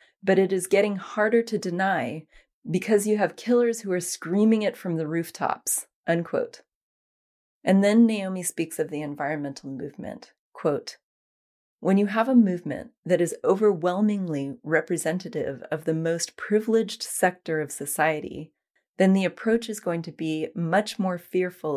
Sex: female